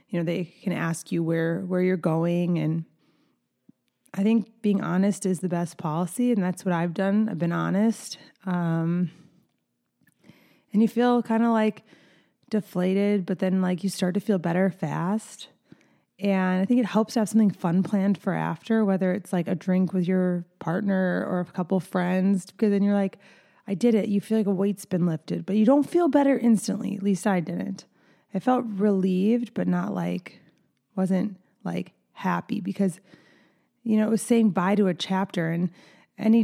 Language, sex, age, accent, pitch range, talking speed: English, female, 20-39, American, 180-215 Hz, 185 wpm